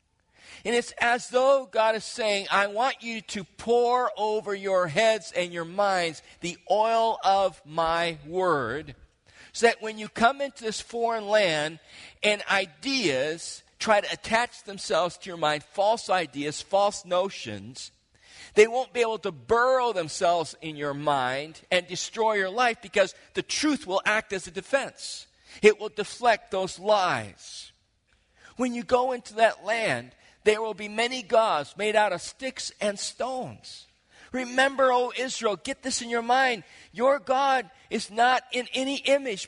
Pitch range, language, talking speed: 175-235 Hz, English, 160 wpm